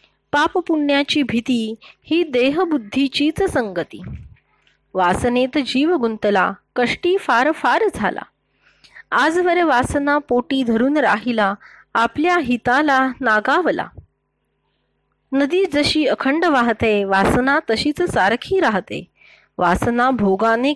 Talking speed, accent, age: 75 wpm, native, 30-49